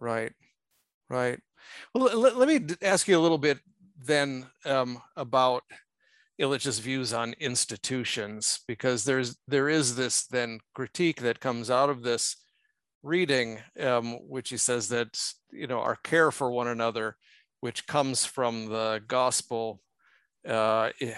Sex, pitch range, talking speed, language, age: male, 115-135 Hz, 140 wpm, English, 50-69